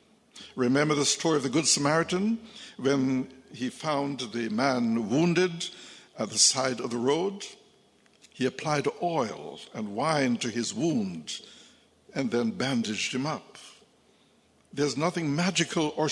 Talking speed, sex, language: 135 wpm, male, English